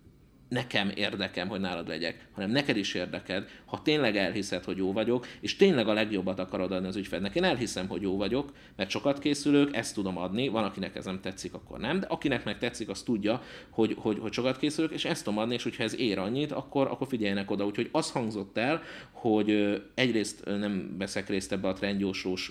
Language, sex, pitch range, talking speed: Hungarian, male, 95-120 Hz, 205 wpm